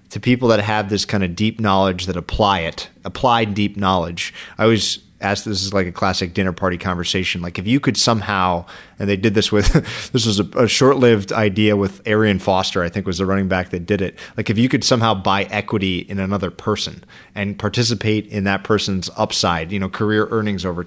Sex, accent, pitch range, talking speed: male, American, 95-110 Hz, 215 wpm